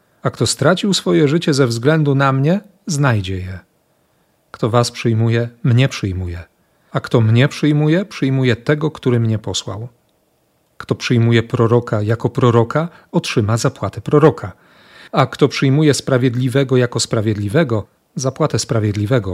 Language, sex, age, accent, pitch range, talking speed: Polish, male, 40-59, native, 110-140 Hz, 125 wpm